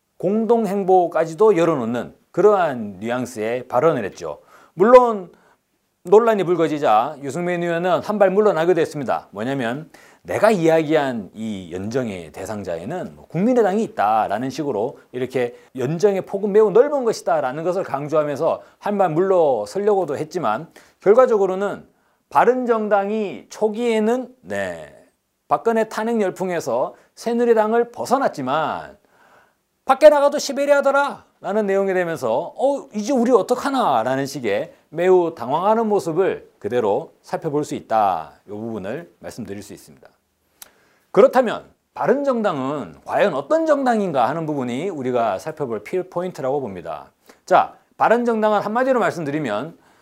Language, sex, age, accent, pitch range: Korean, male, 40-59, native, 165-240 Hz